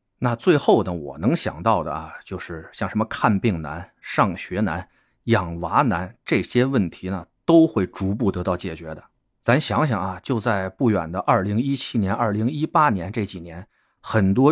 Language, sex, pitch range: Chinese, male, 95-130 Hz